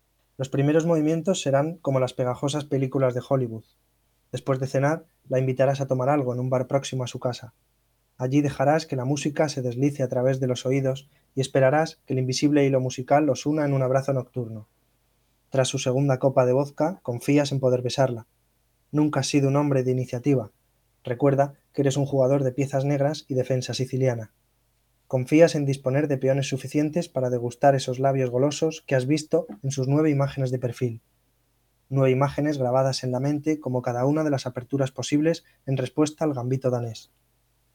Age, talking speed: 20-39, 185 wpm